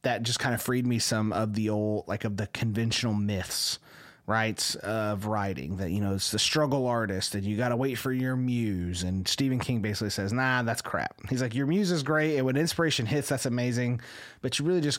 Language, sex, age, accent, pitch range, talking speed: English, male, 30-49, American, 105-130 Hz, 230 wpm